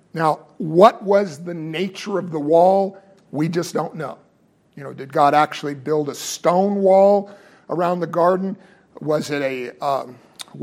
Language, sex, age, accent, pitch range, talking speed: English, male, 50-69, American, 160-195 Hz, 160 wpm